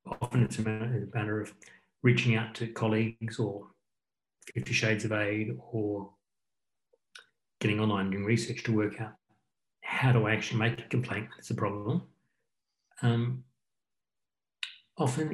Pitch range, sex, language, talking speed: 110-130 Hz, male, English, 135 wpm